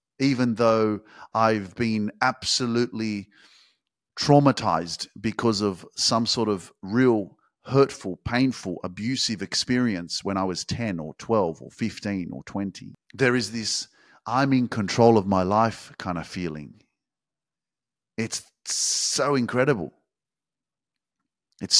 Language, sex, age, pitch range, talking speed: English, male, 40-59, 105-135 Hz, 115 wpm